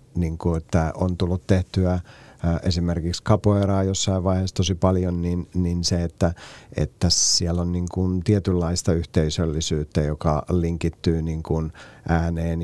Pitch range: 80-90 Hz